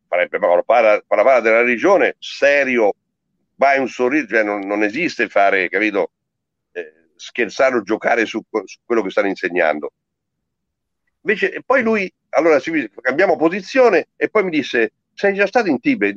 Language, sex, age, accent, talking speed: Italian, male, 60-79, native, 140 wpm